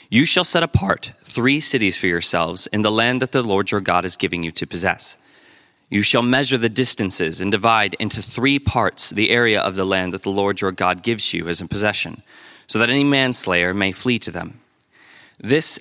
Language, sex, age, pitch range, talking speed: English, male, 20-39, 100-120 Hz, 210 wpm